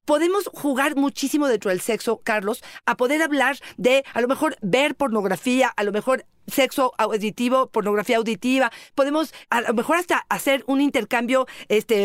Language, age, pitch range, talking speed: Spanish, 40-59, 215-275 Hz, 160 wpm